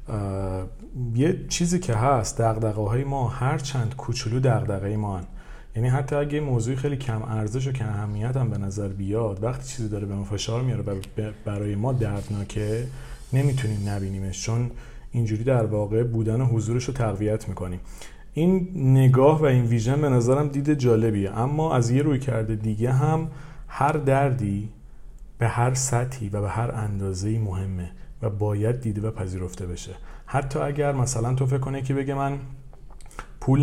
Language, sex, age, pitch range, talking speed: Persian, male, 40-59, 105-130 Hz, 160 wpm